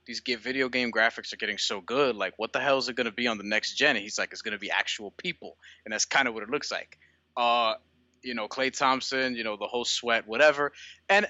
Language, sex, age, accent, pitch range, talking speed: English, male, 20-39, American, 115-135 Hz, 265 wpm